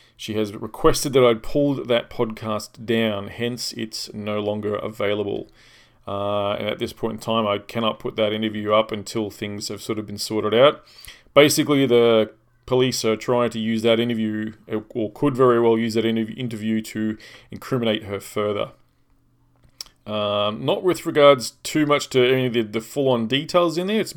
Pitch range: 110-125 Hz